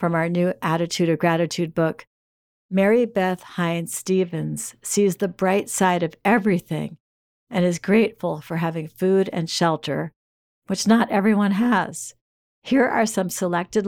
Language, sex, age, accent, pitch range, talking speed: English, female, 60-79, American, 165-195 Hz, 145 wpm